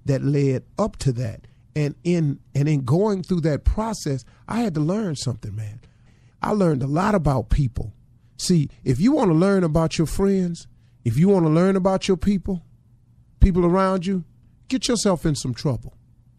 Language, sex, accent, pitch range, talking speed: English, male, American, 120-175 Hz, 185 wpm